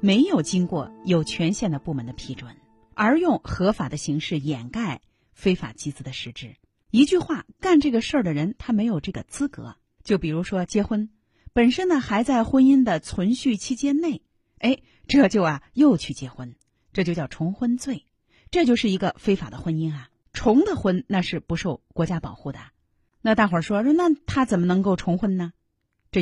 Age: 30-49